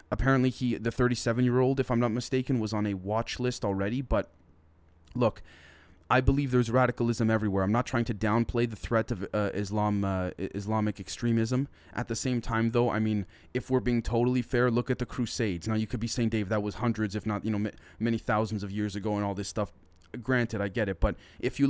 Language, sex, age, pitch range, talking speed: English, male, 20-39, 105-125 Hz, 220 wpm